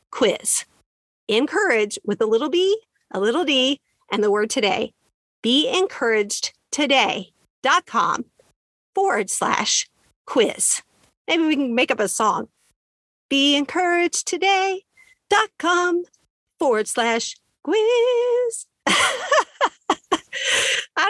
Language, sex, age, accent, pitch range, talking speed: English, female, 50-69, American, 230-385 Hz, 95 wpm